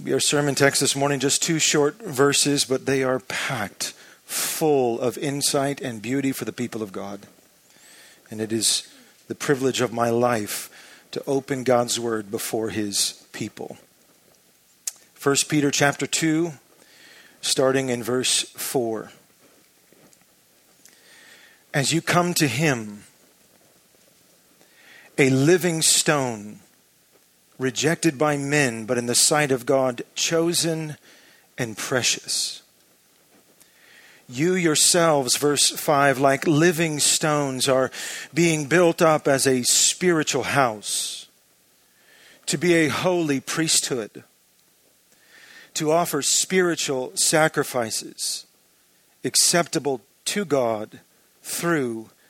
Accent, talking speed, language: American, 110 wpm, English